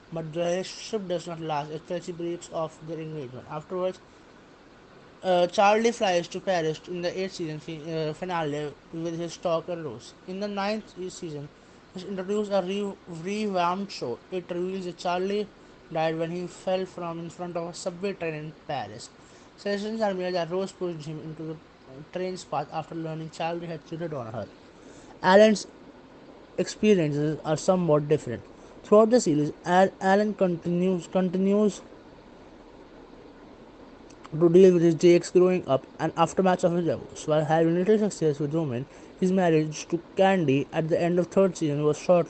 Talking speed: 160 wpm